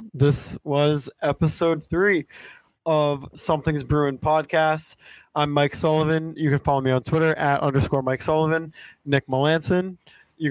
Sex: male